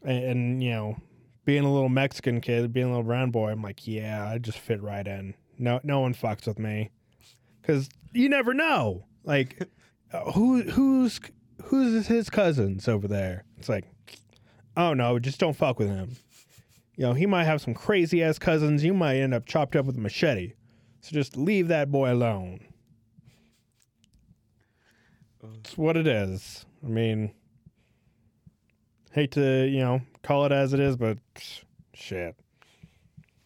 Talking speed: 160 wpm